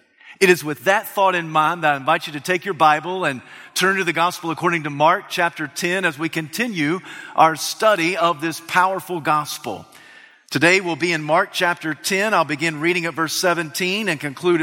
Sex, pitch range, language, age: male, 155-185 Hz, English, 40-59